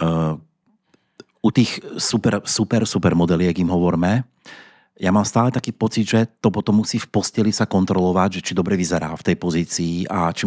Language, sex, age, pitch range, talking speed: Czech, male, 30-49, 85-100 Hz, 185 wpm